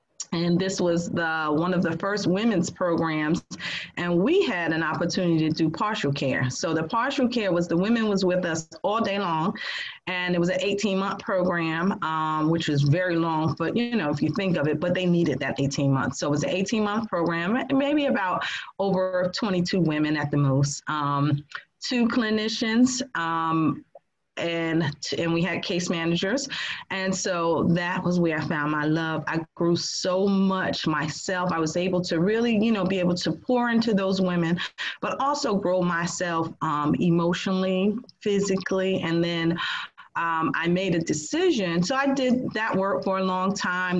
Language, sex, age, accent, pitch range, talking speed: English, female, 30-49, American, 160-195 Hz, 180 wpm